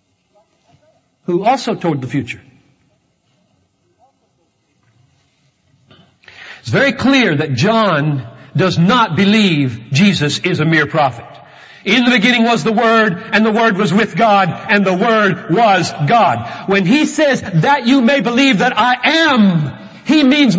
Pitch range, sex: 155-225 Hz, male